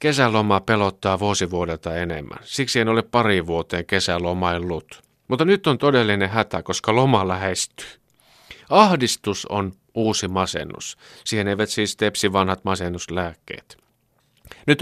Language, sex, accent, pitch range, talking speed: Finnish, male, native, 85-120 Hz, 115 wpm